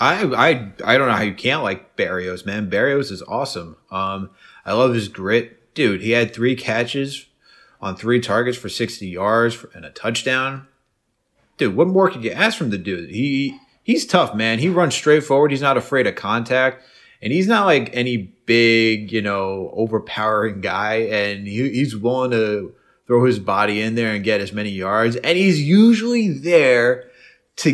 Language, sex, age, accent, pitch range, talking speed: English, male, 30-49, American, 105-135 Hz, 185 wpm